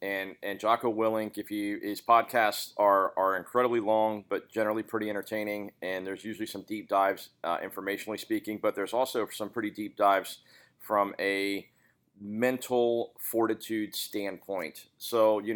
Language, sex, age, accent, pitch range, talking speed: English, male, 40-59, American, 100-115 Hz, 150 wpm